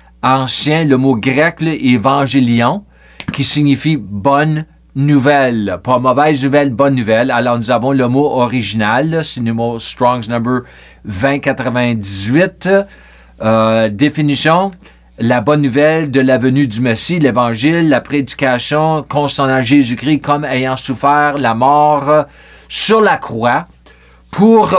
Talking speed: 145 wpm